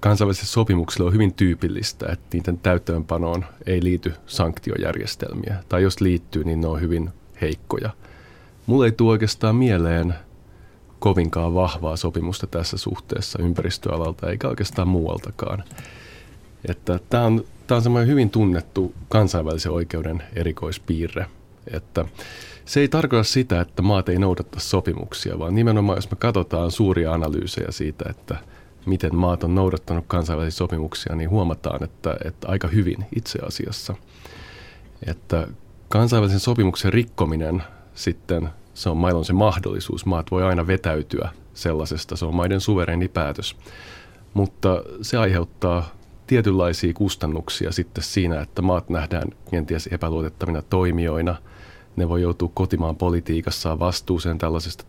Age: 30-49